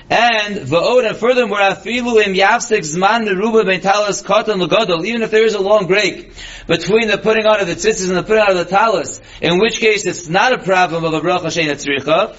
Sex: male